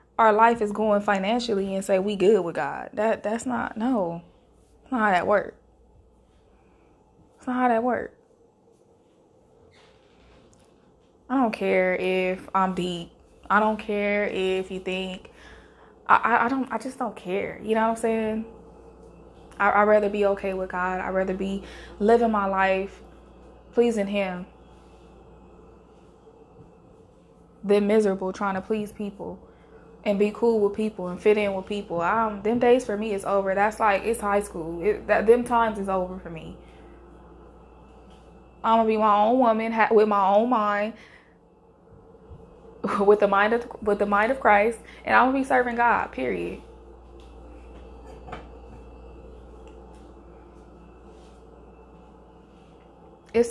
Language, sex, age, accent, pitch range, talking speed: English, female, 20-39, American, 190-225 Hz, 145 wpm